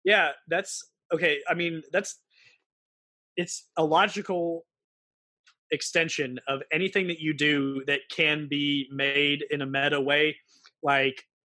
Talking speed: 125 wpm